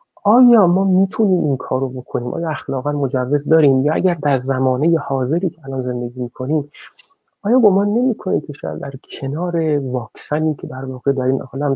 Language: Persian